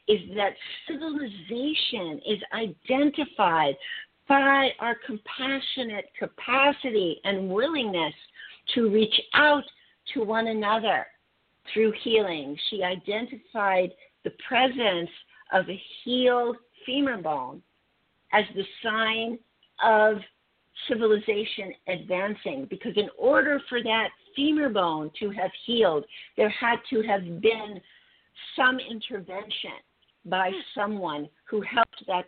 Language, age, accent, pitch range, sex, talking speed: English, 50-69, American, 180-235 Hz, female, 105 wpm